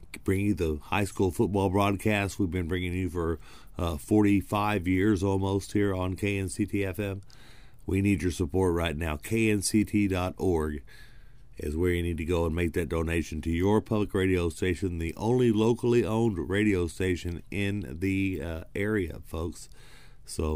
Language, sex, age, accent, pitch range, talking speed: English, male, 50-69, American, 85-105 Hz, 155 wpm